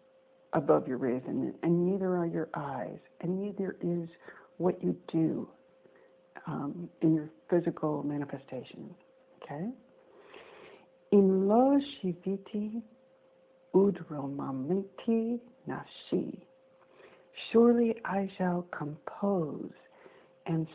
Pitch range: 155-215 Hz